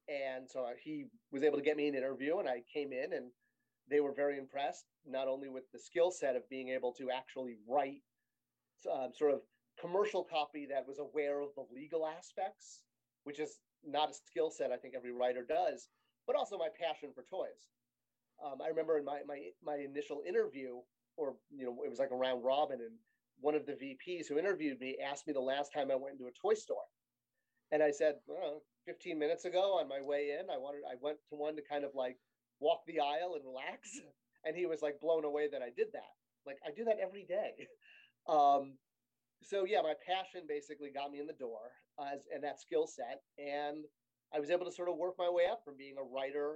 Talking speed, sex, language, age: 215 wpm, male, English, 30-49